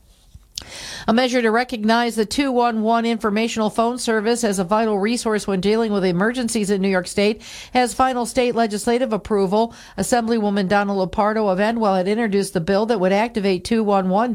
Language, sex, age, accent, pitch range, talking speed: English, female, 50-69, American, 185-225 Hz, 165 wpm